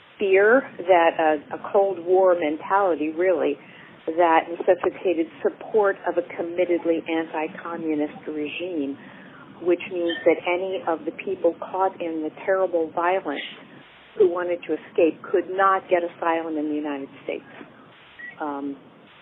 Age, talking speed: 50-69, 130 wpm